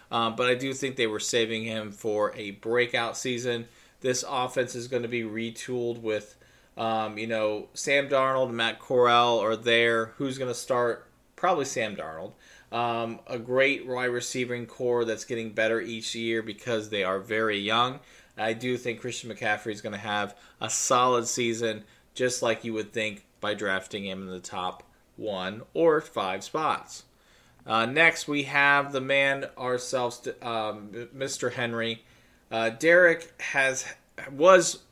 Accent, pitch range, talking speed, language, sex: American, 110-130 Hz, 165 wpm, English, male